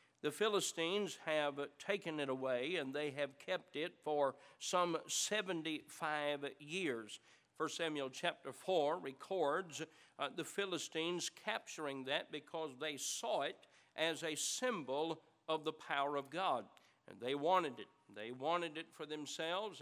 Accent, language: American, English